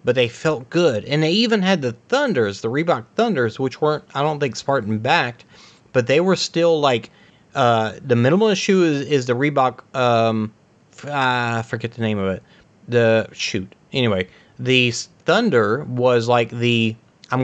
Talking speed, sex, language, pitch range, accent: 165 wpm, male, English, 110-155 Hz, American